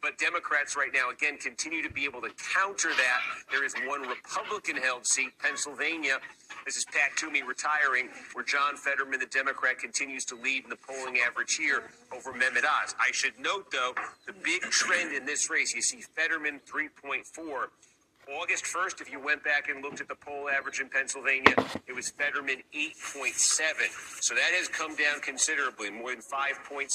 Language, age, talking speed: English, 40-59, 180 wpm